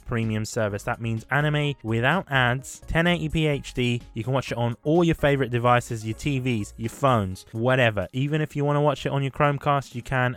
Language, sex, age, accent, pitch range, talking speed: English, male, 20-39, British, 120-155 Hz, 205 wpm